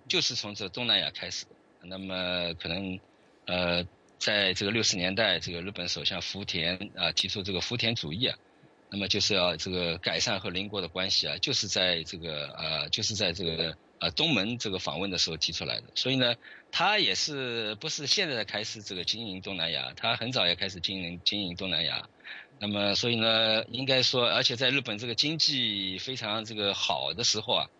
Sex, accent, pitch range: male, Chinese, 90-110 Hz